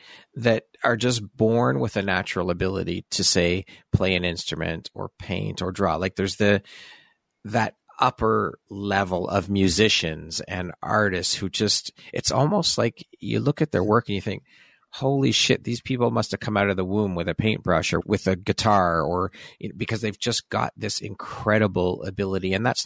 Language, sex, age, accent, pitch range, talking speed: English, male, 40-59, American, 90-110 Hz, 175 wpm